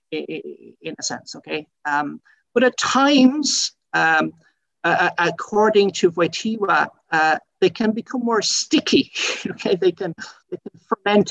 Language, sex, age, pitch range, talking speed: English, male, 50-69, 170-265 Hz, 135 wpm